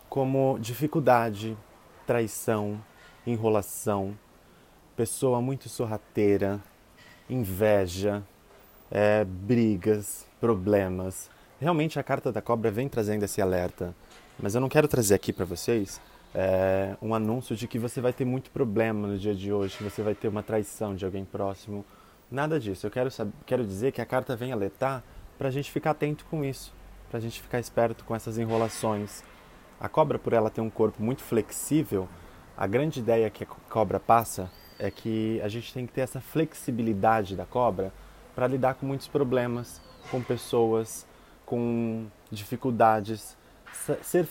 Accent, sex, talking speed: Brazilian, male, 155 wpm